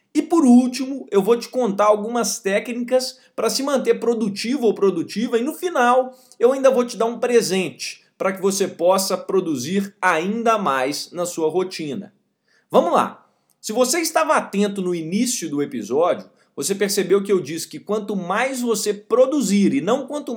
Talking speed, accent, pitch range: 170 wpm, Brazilian, 185-235 Hz